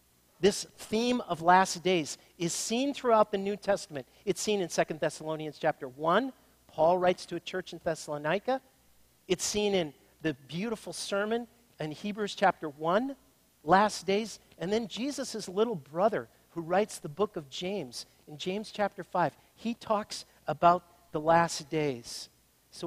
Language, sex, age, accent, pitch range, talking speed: English, male, 50-69, American, 140-210 Hz, 155 wpm